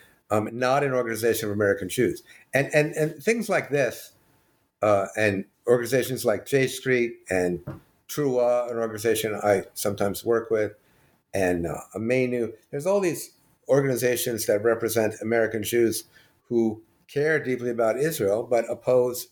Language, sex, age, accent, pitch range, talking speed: English, male, 50-69, American, 105-130 Hz, 140 wpm